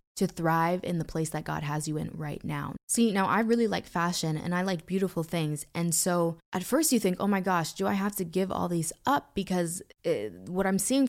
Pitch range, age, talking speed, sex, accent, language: 155-185 Hz, 20-39, 240 wpm, female, American, English